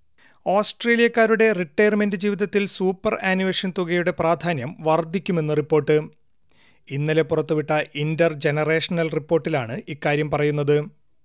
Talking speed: 85 wpm